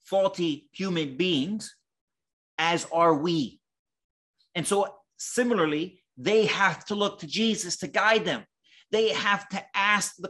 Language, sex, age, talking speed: English, male, 30-49, 135 wpm